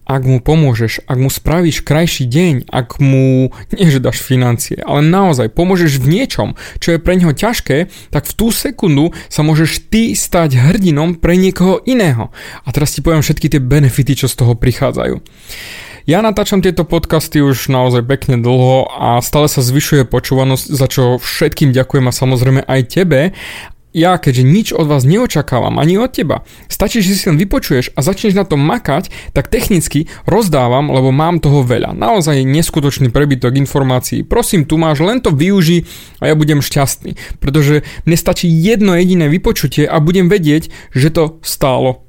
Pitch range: 130-165 Hz